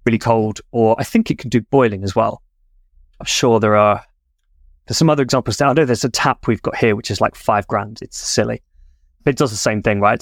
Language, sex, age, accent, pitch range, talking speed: English, male, 20-39, British, 100-125 Hz, 255 wpm